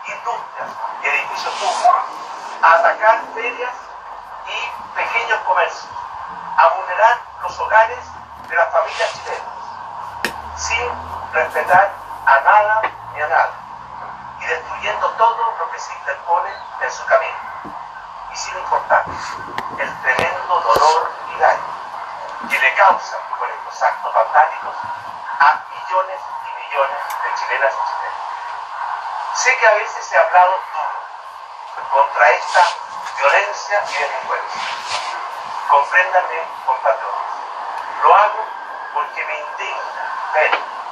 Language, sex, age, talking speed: Spanish, male, 50-69, 115 wpm